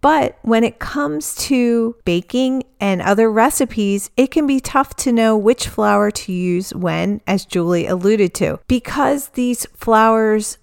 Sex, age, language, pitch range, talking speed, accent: female, 40-59, English, 185-240 Hz, 150 wpm, American